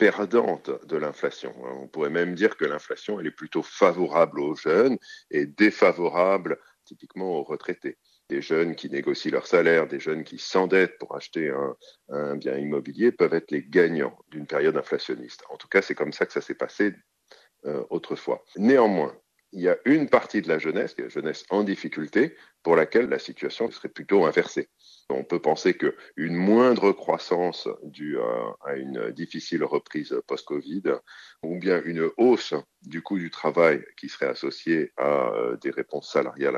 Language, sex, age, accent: French, male, 50-69, French